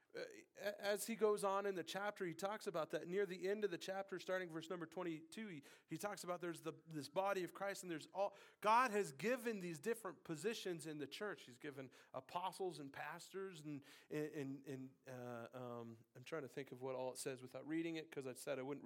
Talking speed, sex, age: 225 wpm, male, 40-59